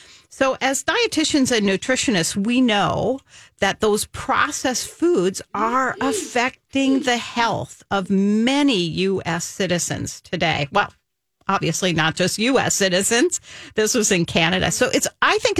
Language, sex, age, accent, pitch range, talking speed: English, female, 50-69, American, 175-240 Hz, 130 wpm